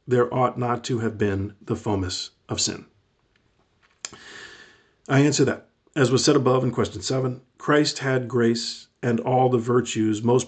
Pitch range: 115-135 Hz